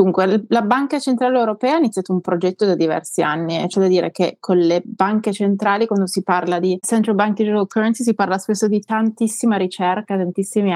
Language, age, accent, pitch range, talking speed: Italian, 30-49, native, 175-215 Hz, 200 wpm